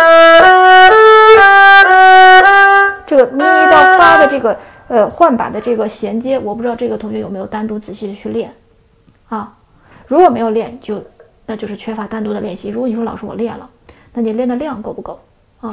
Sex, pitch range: female, 215-270 Hz